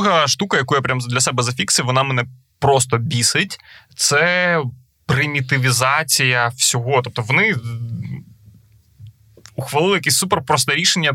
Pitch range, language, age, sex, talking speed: 125-150 Hz, Ukrainian, 20-39, male, 115 wpm